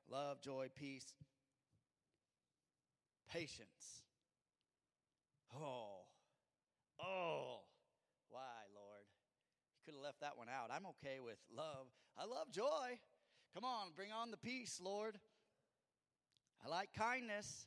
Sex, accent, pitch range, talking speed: male, American, 140-200 Hz, 110 wpm